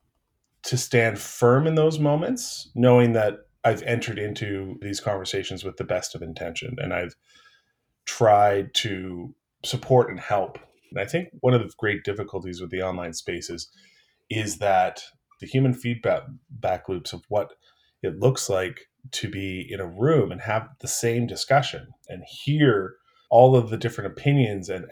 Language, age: English, 30-49